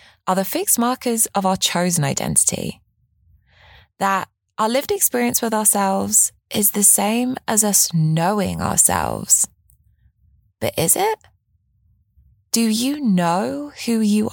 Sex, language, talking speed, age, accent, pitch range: female, English, 120 wpm, 20-39, British, 135-225 Hz